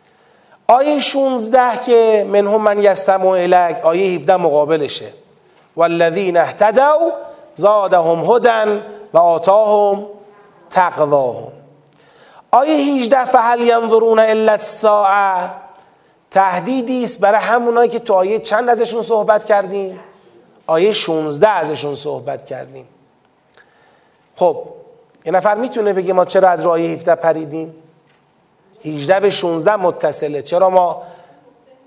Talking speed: 110 wpm